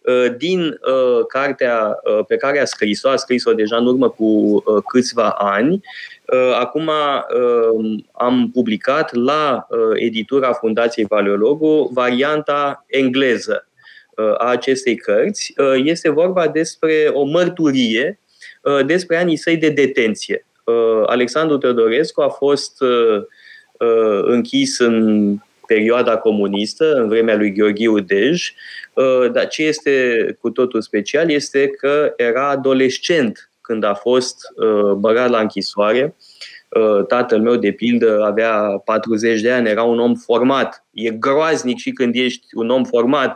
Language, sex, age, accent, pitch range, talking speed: Romanian, male, 20-39, native, 115-160 Hz, 135 wpm